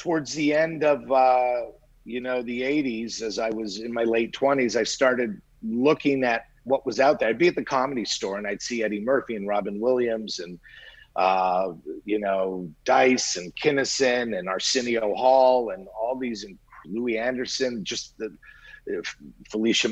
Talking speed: 180 wpm